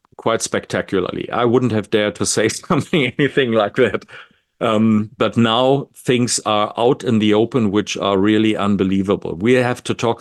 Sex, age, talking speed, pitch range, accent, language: male, 50-69, 170 wpm, 100-115 Hz, German, English